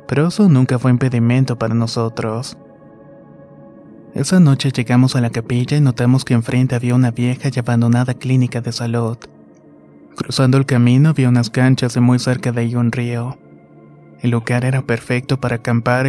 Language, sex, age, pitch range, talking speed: Spanish, male, 20-39, 120-130 Hz, 165 wpm